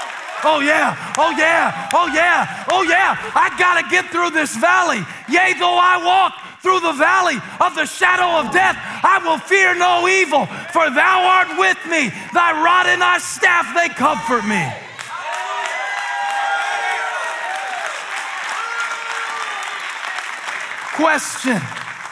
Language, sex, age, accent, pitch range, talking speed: English, male, 40-59, American, 230-380 Hz, 120 wpm